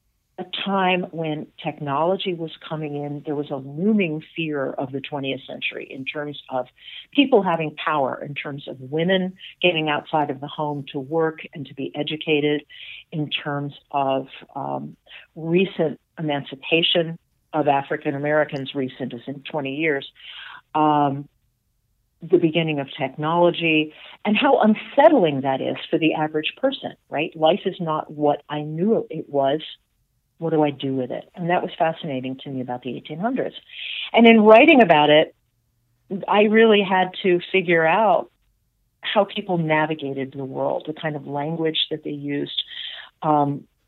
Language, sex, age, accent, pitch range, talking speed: English, female, 50-69, American, 140-170 Hz, 155 wpm